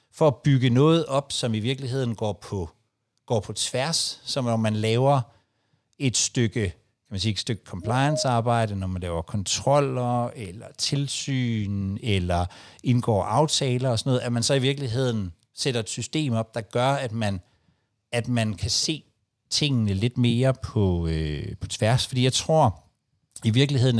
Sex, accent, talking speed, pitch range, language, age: male, native, 165 wpm, 105-135 Hz, Danish, 60-79